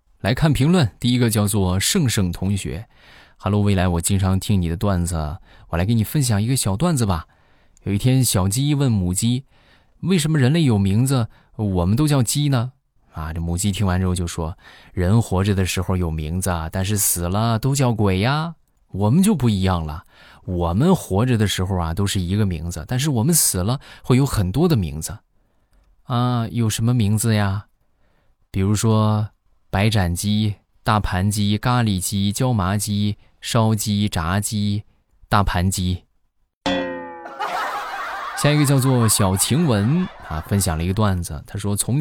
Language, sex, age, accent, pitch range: Chinese, male, 20-39, native, 90-120 Hz